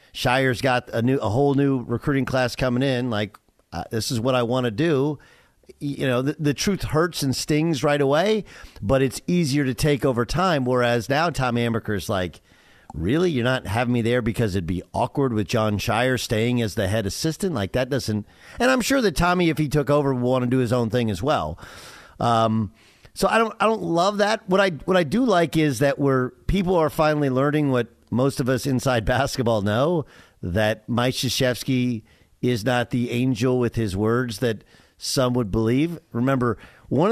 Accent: American